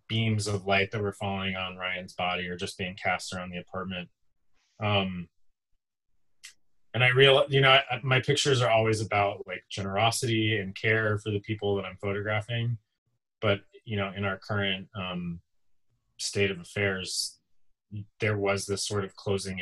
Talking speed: 165 wpm